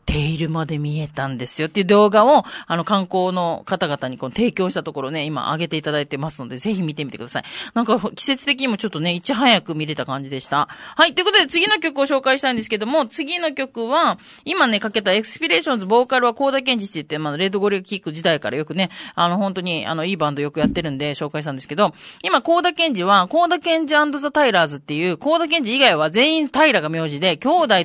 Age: 30-49